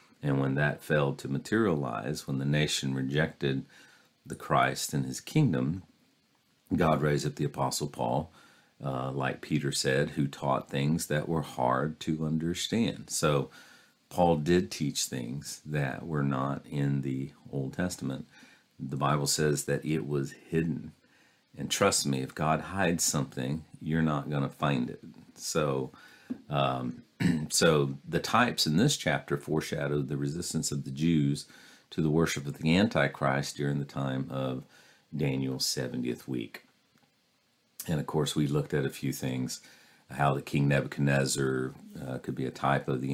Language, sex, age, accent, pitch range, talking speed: English, male, 50-69, American, 65-75 Hz, 155 wpm